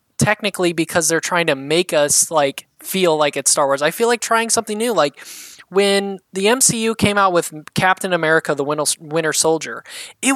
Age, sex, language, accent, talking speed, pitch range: 20-39, male, English, American, 185 wpm, 150-195 Hz